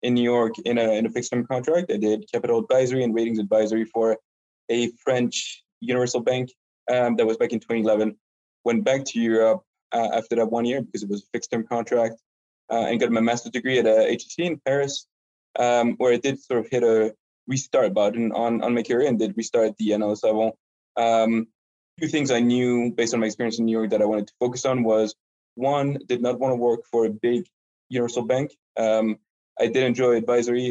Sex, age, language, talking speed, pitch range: male, 20-39, English, 210 wpm, 110-125 Hz